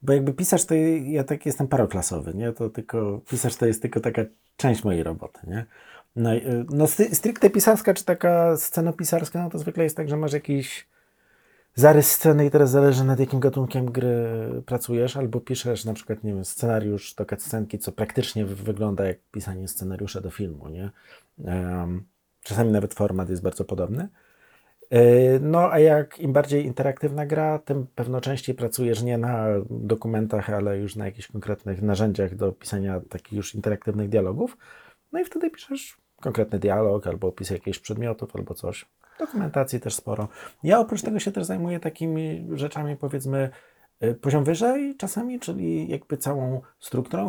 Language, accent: Polish, native